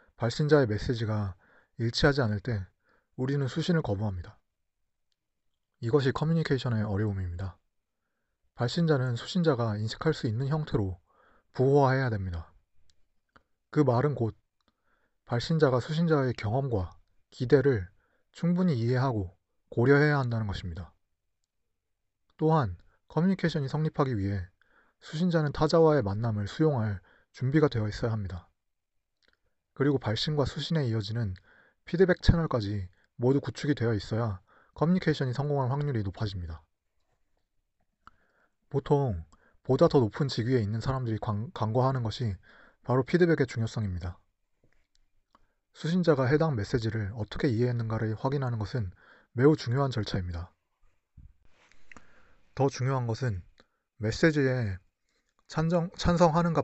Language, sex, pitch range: Korean, male, 100-145 Hz